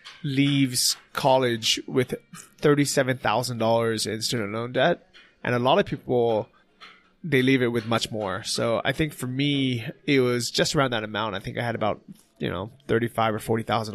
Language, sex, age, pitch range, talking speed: English, male, 20-39, 110-130 Hz, 195 wpm